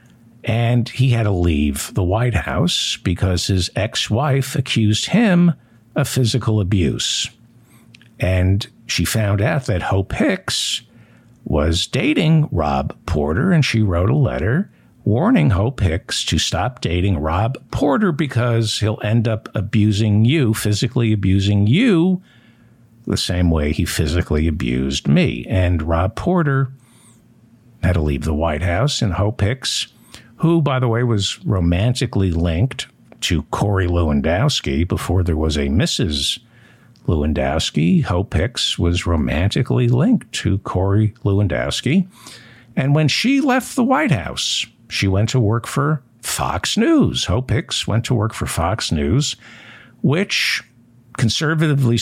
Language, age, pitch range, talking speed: English, 60-79, 90-125 Hz, 135 wpm